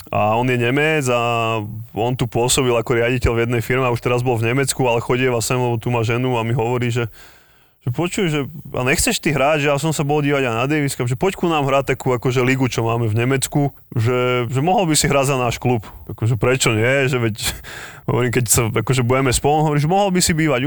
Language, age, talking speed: Slovak, 20-39, 230 wpm